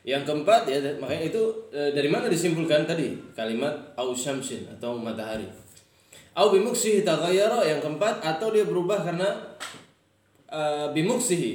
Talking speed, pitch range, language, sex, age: 120 wpm, 120-150 Hz, Indonesian, male, 20-39